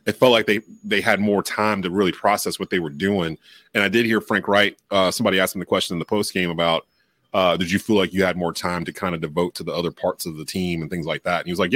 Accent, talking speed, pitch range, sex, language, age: American, 305 wpm, 90-110 Hz, male, English, 30-49